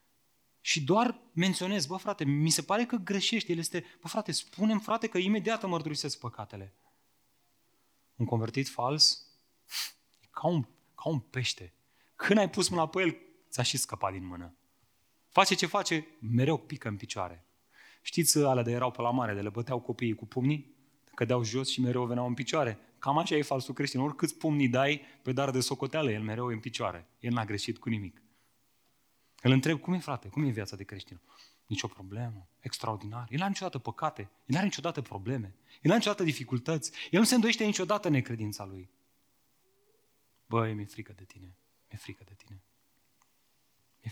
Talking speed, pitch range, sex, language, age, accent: 180 wpm, 110-150 Hz, male, Romanian, 30-49, native